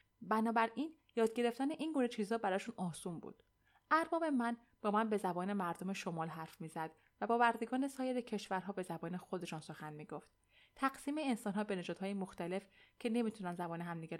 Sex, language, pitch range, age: female, Persian, 180-245 Hz, 20-39